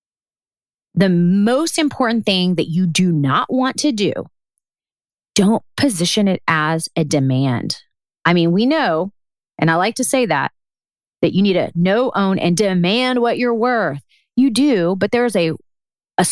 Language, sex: English, female